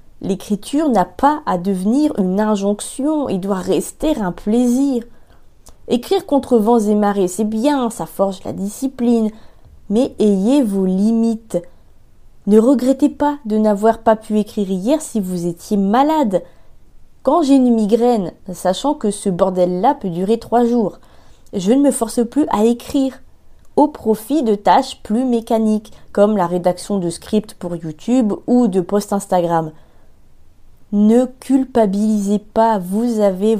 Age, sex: 20-39, female